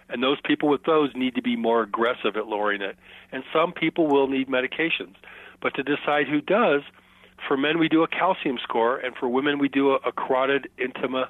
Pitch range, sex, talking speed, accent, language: 120-150 Hz, male, 210 wpm, American, English